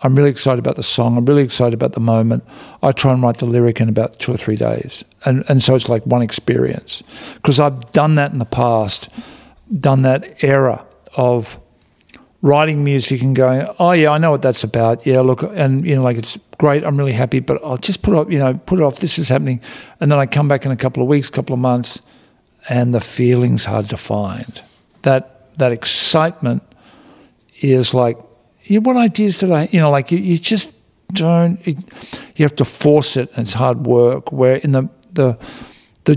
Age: 50-69